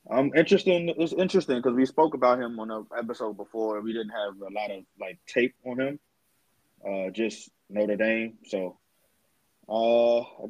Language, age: English, 20-39